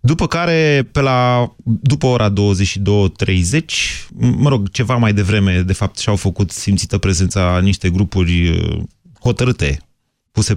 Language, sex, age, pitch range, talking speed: Romanian, male, 30-49, 95-120 Hz, 125 wpm